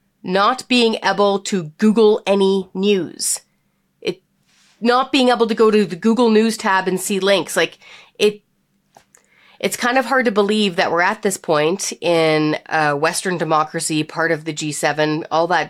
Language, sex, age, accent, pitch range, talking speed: English, female, 30-49, American, 165-225 Hz, 170 wpm